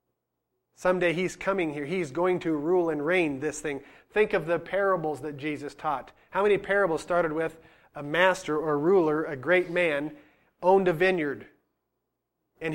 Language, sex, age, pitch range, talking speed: English, male, 30-49, 150-185 Hz, 165 wpm